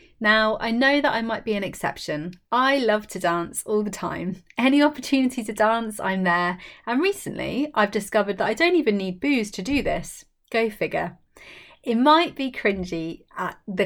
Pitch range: 185-250 Hz